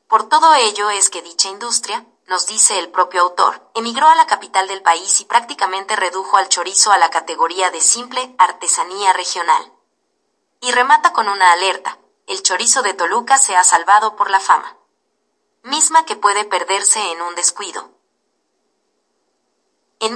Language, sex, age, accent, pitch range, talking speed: Spanish, female, 30-49, Mexican, 185-240 Hz, 160 wpm